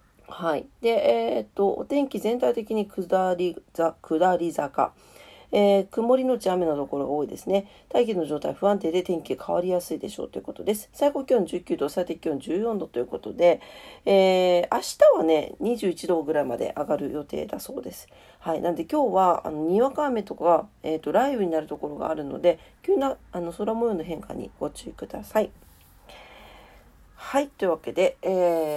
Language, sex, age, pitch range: Japanese, female, 40-59, 170-240 Hz